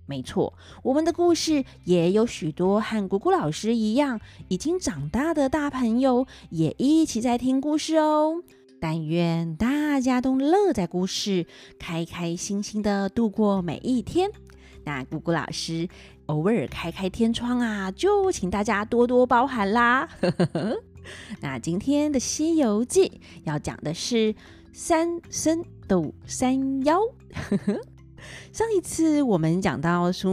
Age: 30-49